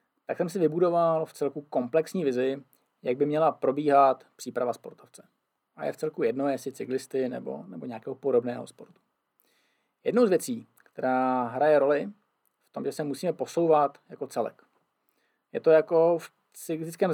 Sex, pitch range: male, 140-180 Hz